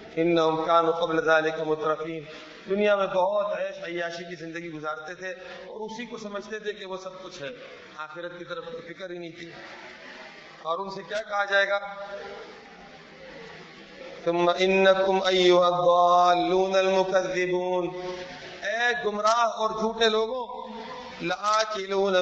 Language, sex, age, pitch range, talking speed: Urdu, male, 40-59, 170-215 Hz, 110 wpm